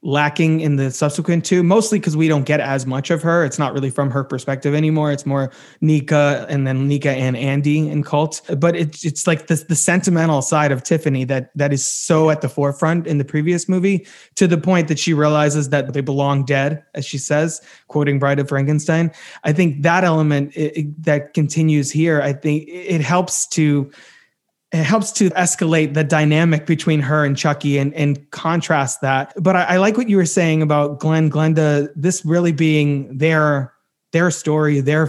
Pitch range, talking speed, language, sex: 145-165 Hz, 195 wpm, English, male